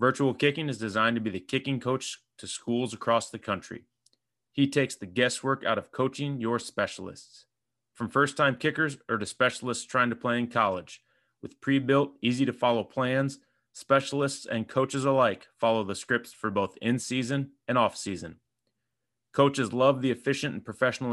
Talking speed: 170 wpm